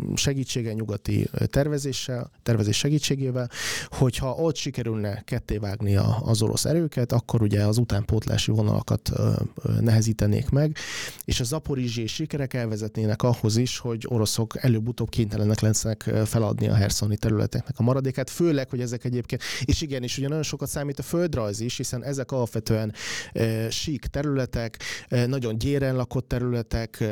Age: 30-49